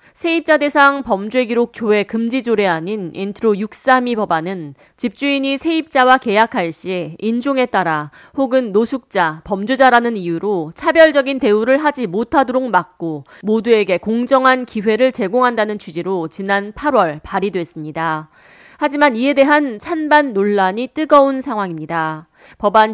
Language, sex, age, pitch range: Korean, female, 30-49, 195-270 Hz